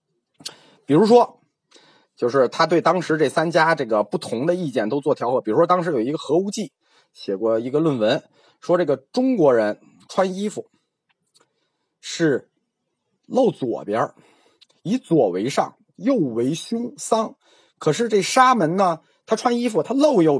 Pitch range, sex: 165-245 Hz, male